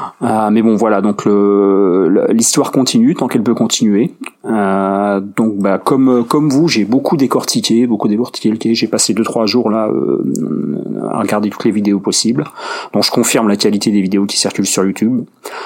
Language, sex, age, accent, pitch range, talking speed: French, male, 30-49, French, 100-120 Hz, 185 wpm